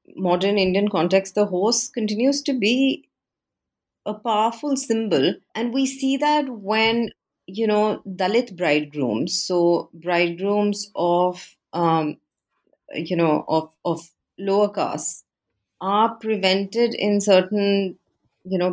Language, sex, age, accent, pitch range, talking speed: English, female, 30-49, Indian, 175-225 Hz, 115 wpm